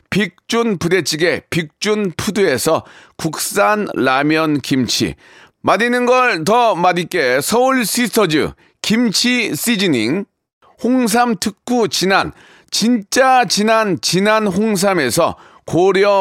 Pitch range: 185-235 Hz